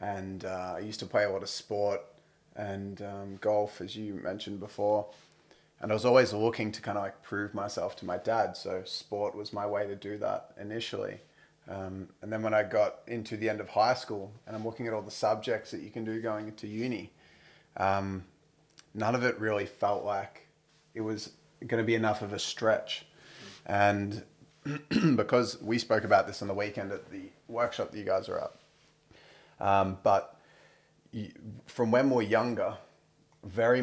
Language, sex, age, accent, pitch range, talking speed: English, male, 30-49, Australian, 100-115 Hz, 190 wpm